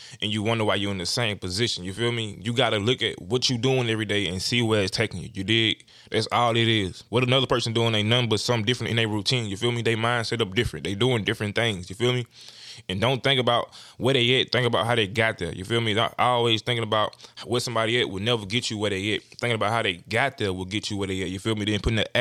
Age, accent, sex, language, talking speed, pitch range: 20-39, American, male, English, 295 wpm, 105-125 Hz